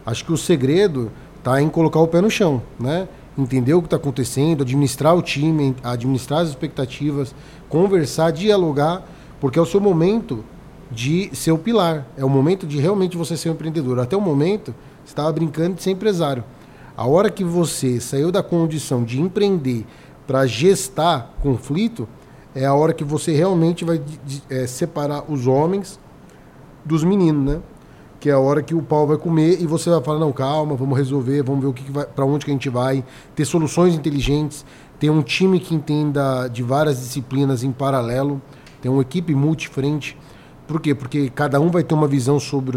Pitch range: 135-165 Hz